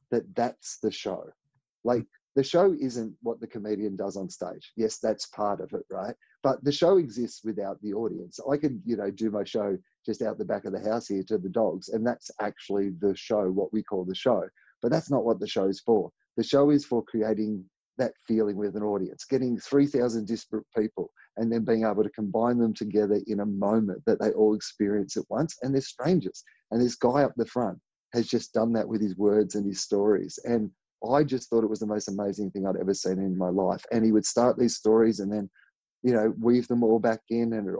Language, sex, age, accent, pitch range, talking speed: English, male, 30-49, Australian, 105-120 Hz, 230 wpm